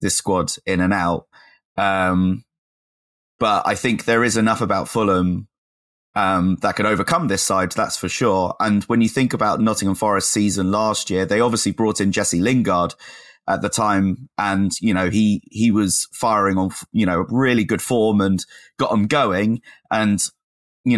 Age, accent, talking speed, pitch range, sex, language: 30-49, British, 175 wpm, 95-110 Hz, male, English